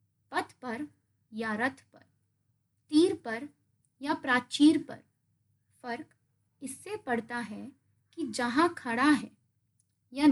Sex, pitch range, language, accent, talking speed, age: female, 235-310 Hz, Hindi, native, 100 wpm, 20-39